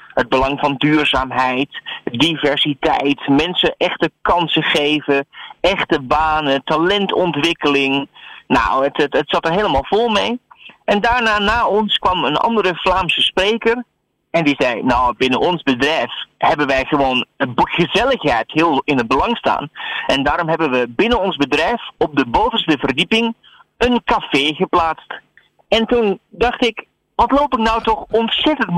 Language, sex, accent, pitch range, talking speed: Dutch, male, Dutch, 145-225 Hz, 145 wpm